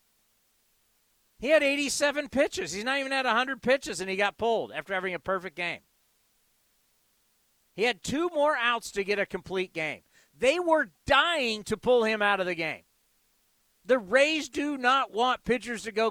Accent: American